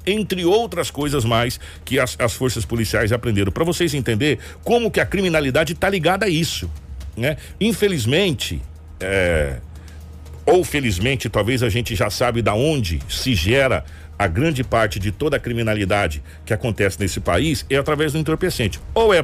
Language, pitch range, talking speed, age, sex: Portuguese, 100-165 Hz, 160 wpm, 60-79, male